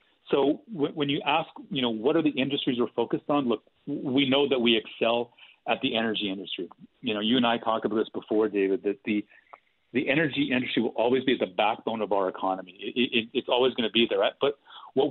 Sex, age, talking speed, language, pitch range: male, 40-59, 225 wpm, English, 110-135 Hz